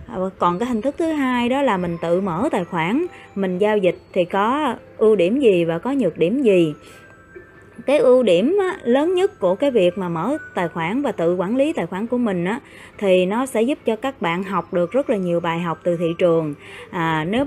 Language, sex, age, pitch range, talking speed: Vietnamese, female, 20-39, 175-260 Hz, 220 wpm